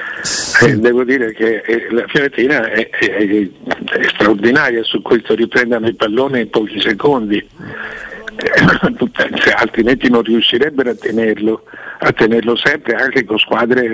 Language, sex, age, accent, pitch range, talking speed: Italian, male, 60-79, native, 115-180 Hz, 135 wpm